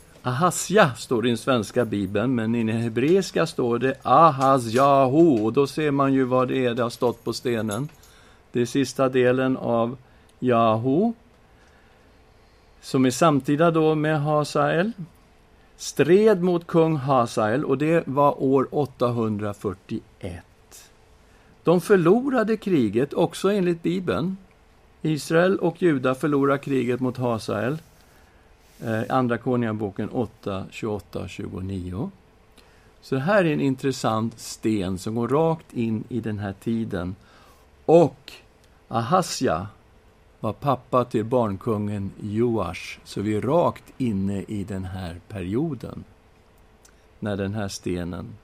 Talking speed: 125 wpm